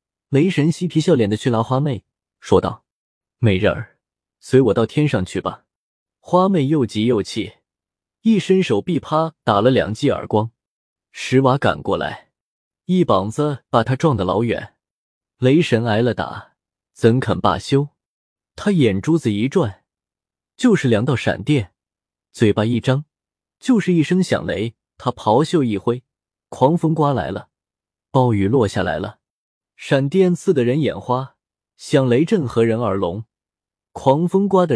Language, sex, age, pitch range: Chinese, male, 20-39, 110-155 Hz